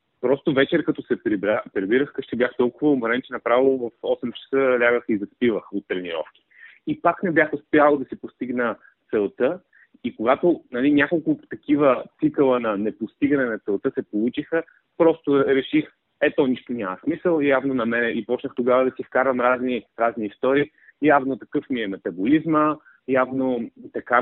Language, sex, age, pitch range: Bulgarian, male, 30-49, 120-155 Hz